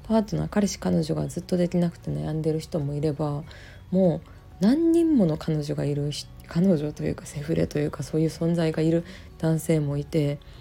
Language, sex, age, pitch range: Japanese, female, 20-39, 140-185 Hz